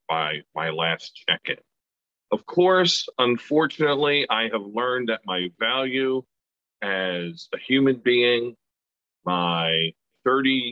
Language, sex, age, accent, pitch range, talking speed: English, male, 40-59, American, 90-120 Hz, 105 wpm